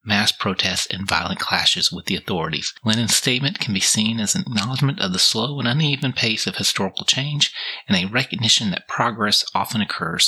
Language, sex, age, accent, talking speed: English, male, 30-49, American, 185 wpm